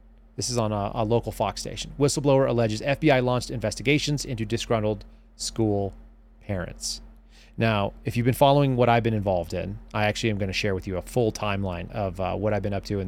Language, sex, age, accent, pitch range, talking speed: English, male, 30-49, American, 105-130 Hz, 210 wpm